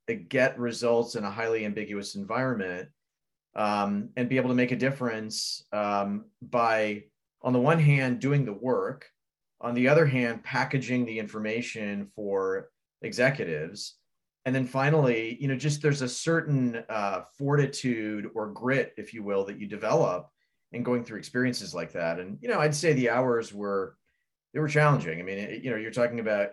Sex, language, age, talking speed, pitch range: male, English, 30-49, 175 wpm, 100-125 Hz